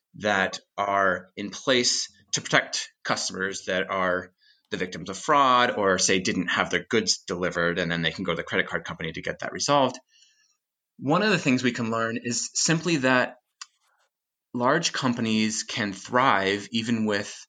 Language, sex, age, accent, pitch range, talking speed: English, male, 20-39, American, 105-165 Hz, 170 wpm